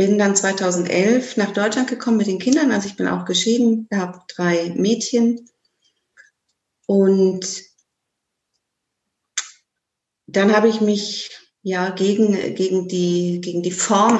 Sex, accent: female, German